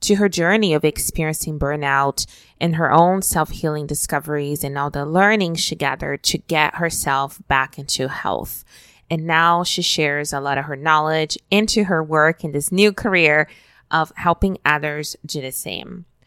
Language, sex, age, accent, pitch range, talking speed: English, female, 20-39, American, 145-175 Hz, 165 wpm